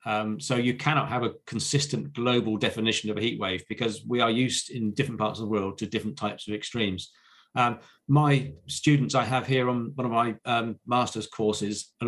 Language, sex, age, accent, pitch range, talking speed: English, male, 40-59, British, 110-140 Hz, 205 wpm